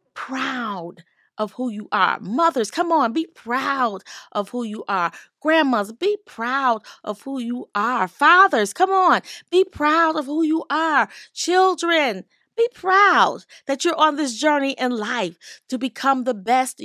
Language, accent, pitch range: English, American, 215-305 Hz